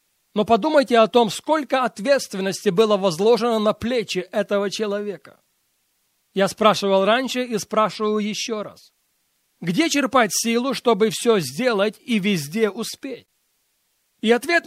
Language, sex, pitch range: Russian, male, 210-240 Hz